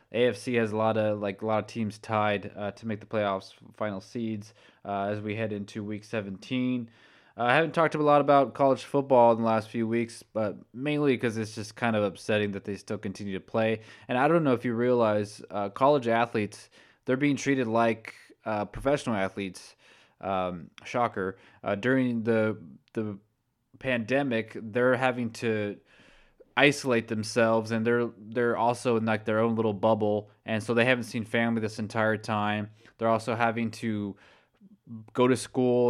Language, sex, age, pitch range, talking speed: English, male, 20-39, 105-120 Hz, 180 wpm